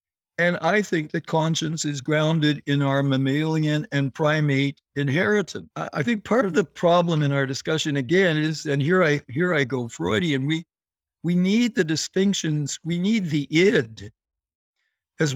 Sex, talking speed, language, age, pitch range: male, 160 wpm, English, 60-79, 140-180 Hz